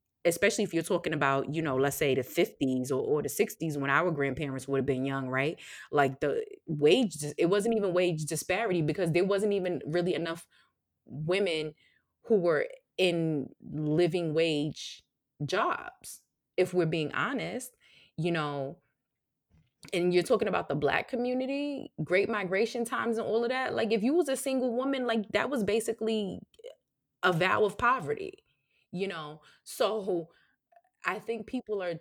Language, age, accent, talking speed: English, 20-39, American, 160 wpm